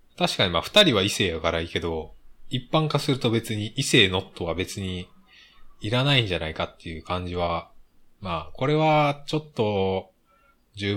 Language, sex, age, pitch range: Japanese, male, 20-39, 90-125 Hz